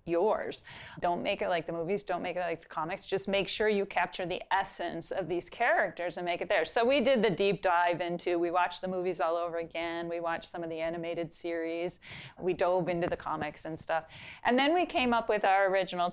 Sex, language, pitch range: female, English, 170-200 Hz